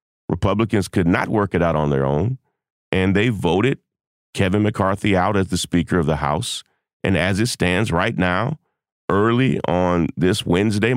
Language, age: English, 40-59